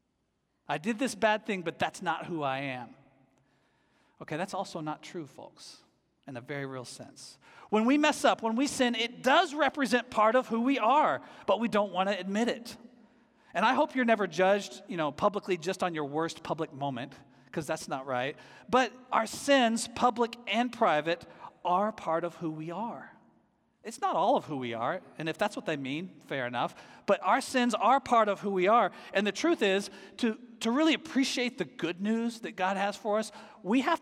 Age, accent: 40-59, American